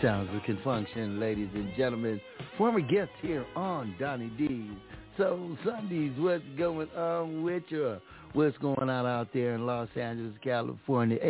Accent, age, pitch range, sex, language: American, 60-79, 125-155 Hz, male, Japanese